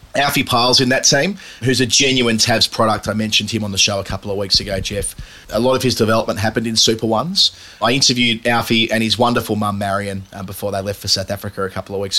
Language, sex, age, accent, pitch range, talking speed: English, male, 30-49, Australian, 105-120 Hz, 245 wpm